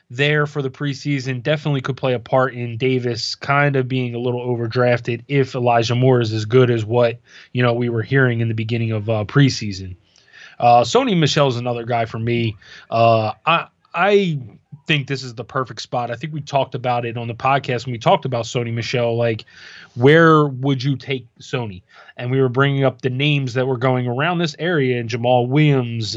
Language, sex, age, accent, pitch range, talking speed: English, male, 20-39, American, 120-145 Hz, 205 wpm